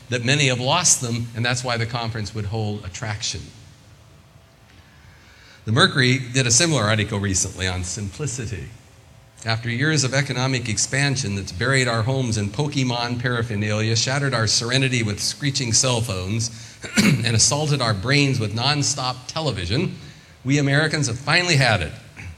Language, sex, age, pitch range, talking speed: English, male, 40-59, 105-135 Hz, 145 wpm